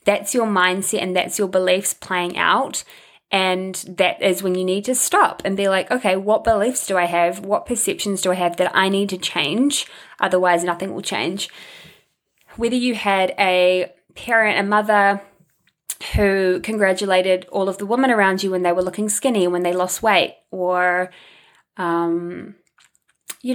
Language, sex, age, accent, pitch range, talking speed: English, female, 20-39, Australian, 185-220 Hz, 170 wpm